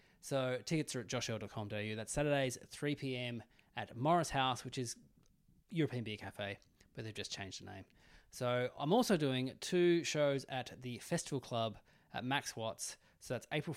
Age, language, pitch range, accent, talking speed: 20-39, English, 115-145 Hz, Australian, 175 wpm